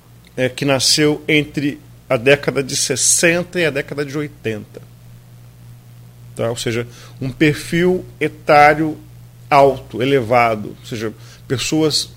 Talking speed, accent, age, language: 110 wpm, Brazilian, 40-59, Portuguese